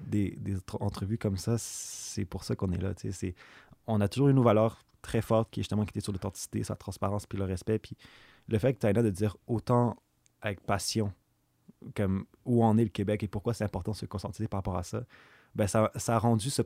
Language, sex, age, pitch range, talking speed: French, male, 20-39, 100-115 Hz, 240 wpm